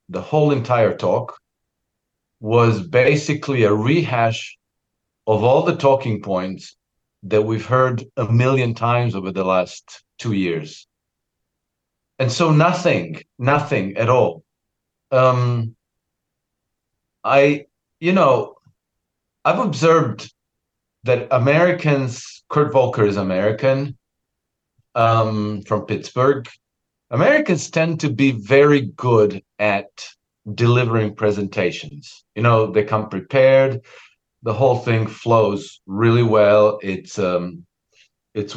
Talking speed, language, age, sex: 105 wpm, English, 50-69, male